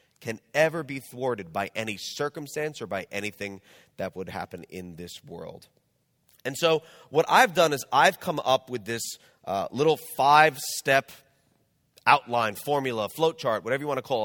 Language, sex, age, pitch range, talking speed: English, male, 30-49, 110-155 Hz, 165 wpm